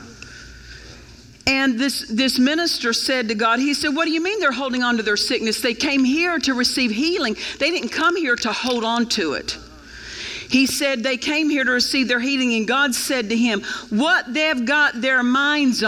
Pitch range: 250-310 Hz